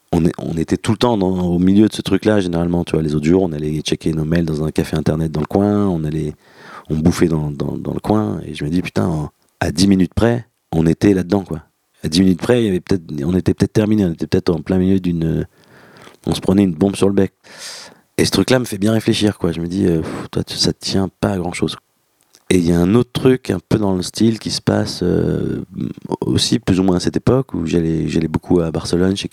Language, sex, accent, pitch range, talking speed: French, male, French, 80-100 Hz, 260 wpm